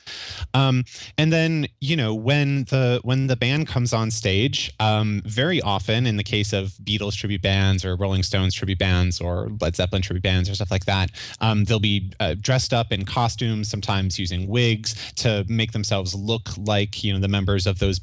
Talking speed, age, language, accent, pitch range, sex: 195 wpm, 20-39, English, American, 95-120 Hz, male